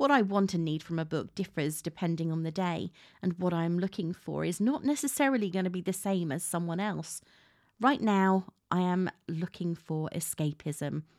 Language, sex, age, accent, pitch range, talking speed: English, female, 30-49, British, 165-210 Hz, 195 wpm